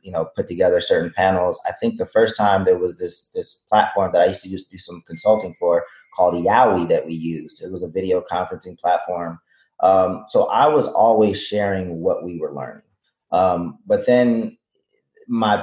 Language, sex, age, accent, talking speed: English, male, 30-49, American, 190 wpm